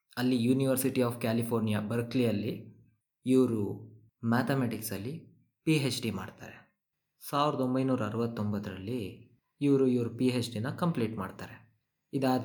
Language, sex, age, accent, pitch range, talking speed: Kannada, male, 20-39, native, 105-125 Hz, 105 wpm